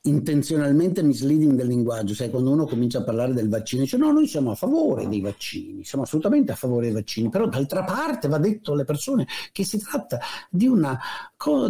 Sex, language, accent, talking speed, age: male, Italian, native, 195 wpm, 50-69